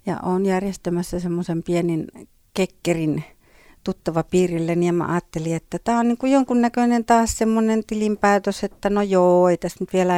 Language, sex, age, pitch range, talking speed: Finnish, female, 60-79, 160-205 Hz, 155 wpm